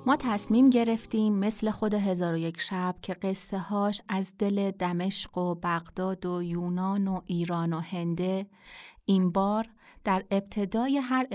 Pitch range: 185-225 Hz